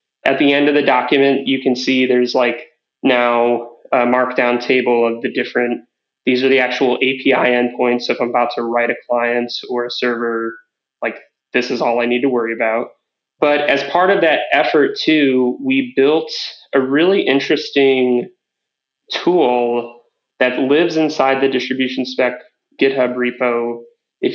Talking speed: 165 wpm